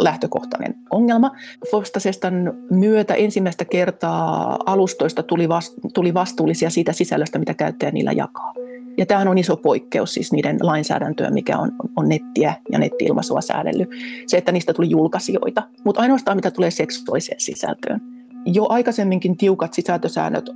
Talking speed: 135 wpm